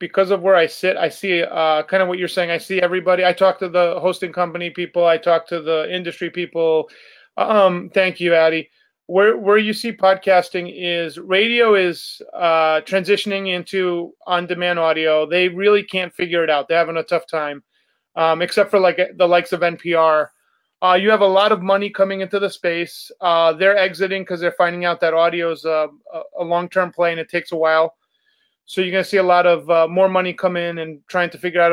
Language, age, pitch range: English, 30-49, 170-195 Hz